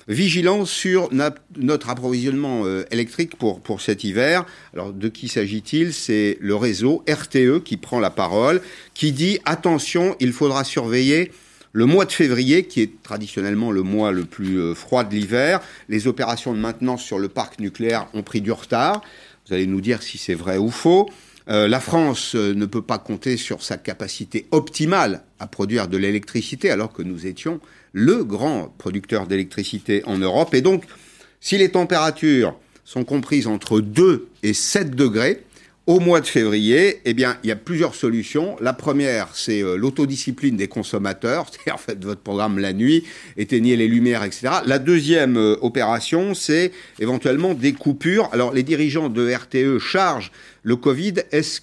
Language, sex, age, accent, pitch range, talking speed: French, male, 50-69, French, 105-155 Hz, 165 wpm